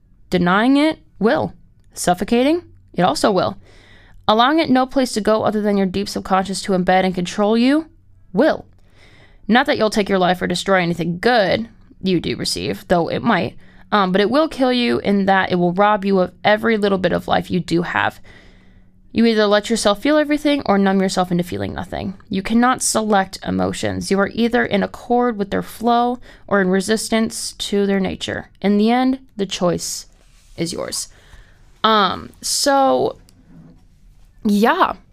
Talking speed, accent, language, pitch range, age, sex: 175 wpm, American, English, 175-235 Hz, 20-39, female